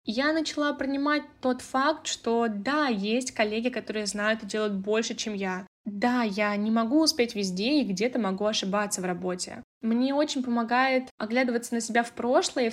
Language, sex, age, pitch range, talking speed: Russian, female, 10-29, 205-245 Hz, 175 wpm